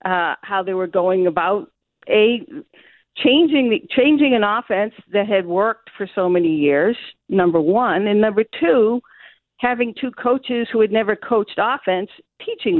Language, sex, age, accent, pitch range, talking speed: English, female, 50-69, American, 190-245 Hz, 155 wpm